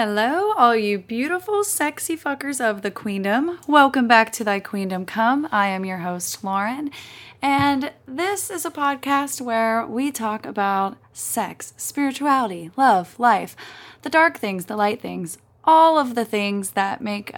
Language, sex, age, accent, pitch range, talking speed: English, female, 20-39, American, 195-275 Hz, 155 wpm